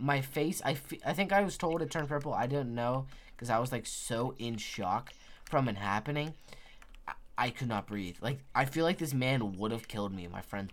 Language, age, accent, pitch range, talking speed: English, 10-29, American, 105-145 Hz, 240 wpm